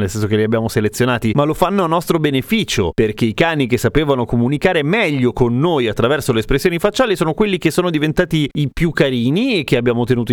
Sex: male